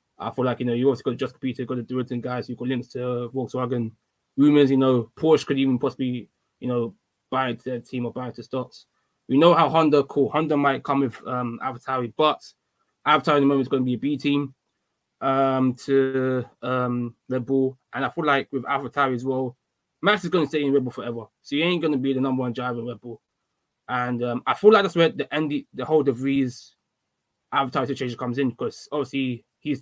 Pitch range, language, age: 125-140 Hz, English, 20-39